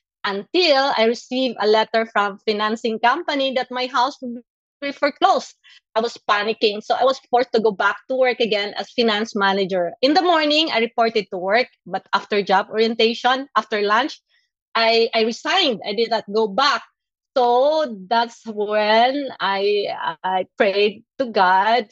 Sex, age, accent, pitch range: female, 20-39, Filipino, 210-250 Hz